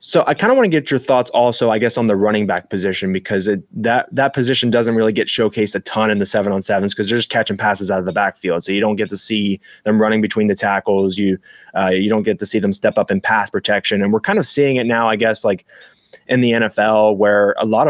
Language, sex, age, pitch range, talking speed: English, male, 20-39, 100-120 Hz, 275 wpm